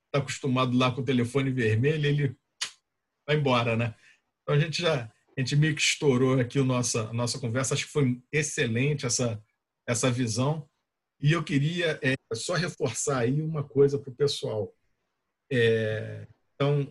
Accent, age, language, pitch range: Brazilian, 40-59, Portuguese, 120-150 Hz